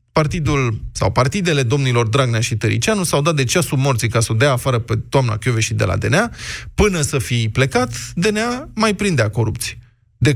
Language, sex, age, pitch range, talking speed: Romanian, male, 20-39, 120-155 Hz, 185 wpm